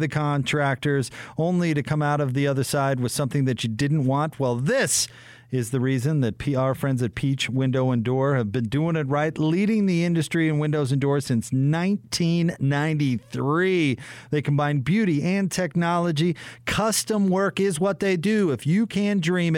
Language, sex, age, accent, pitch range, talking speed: English, male, 40-59, American, 120-160 Hz, 180 wpm